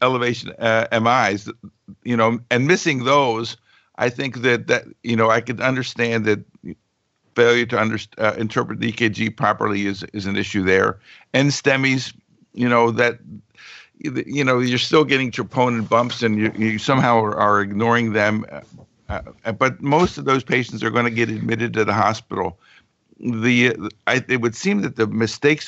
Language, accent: English, American